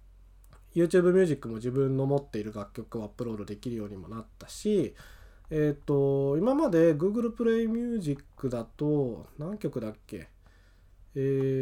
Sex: male